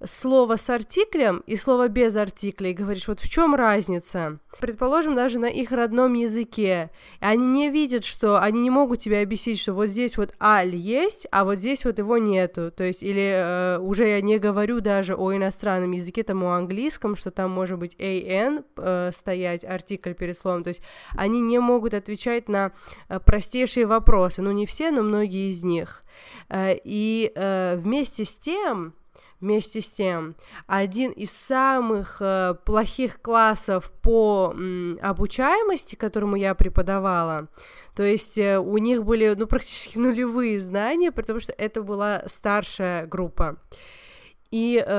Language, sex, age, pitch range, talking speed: Russian, female, 20-39, 190-235 Hz, 155 wpm